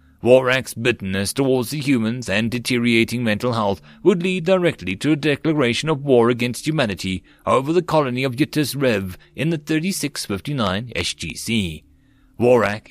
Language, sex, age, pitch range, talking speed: English, male, 30-49, 100-135 Hz, 140 wpm